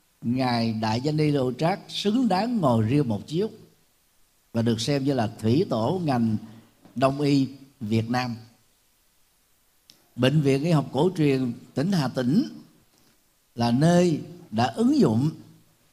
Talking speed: 145 wpm